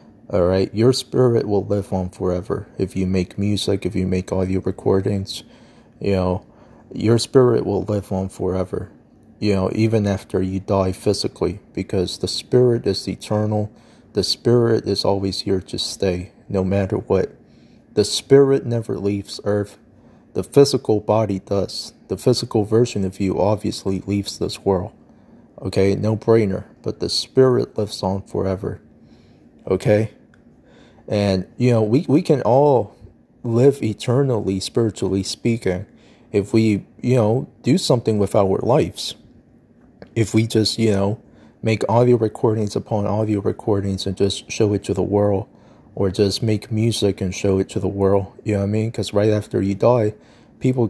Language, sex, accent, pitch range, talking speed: English, male, American, 95-115 Hz, 155 wpm